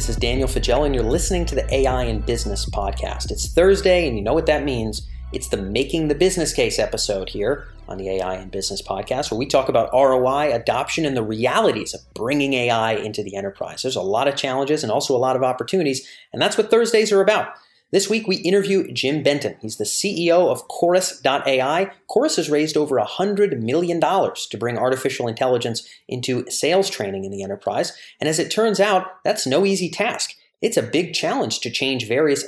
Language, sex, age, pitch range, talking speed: English, male, 30-49, 110-160 Hz, 205 wpm